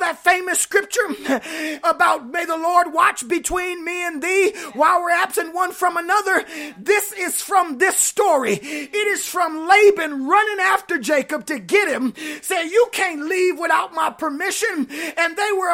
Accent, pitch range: American, 330-400 Hz